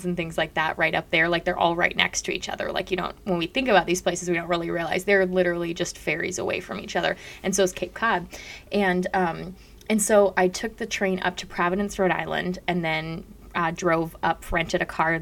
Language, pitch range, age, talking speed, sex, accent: English, 170-195 Hz, 20-39, 245 wpm, female, American